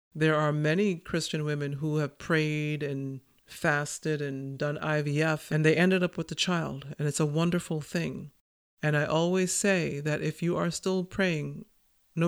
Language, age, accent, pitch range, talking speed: English, 50-69, American, 150-175 Hz, 175 wpm